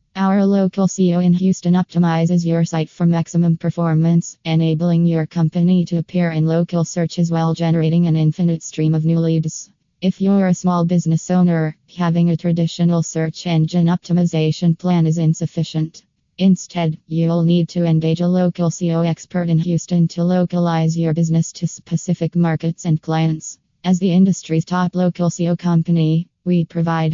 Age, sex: 20-39, female